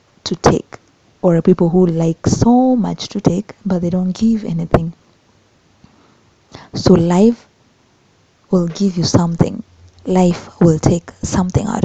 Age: 20-39